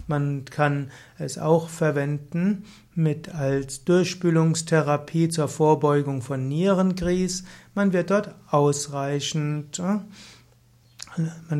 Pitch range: 145-170 Hz